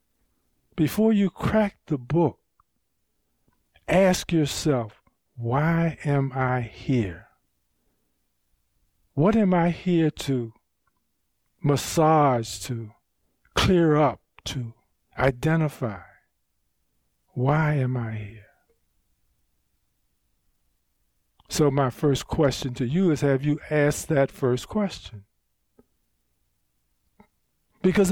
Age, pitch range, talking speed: 50-69, 110-165 Hz, 85 wpm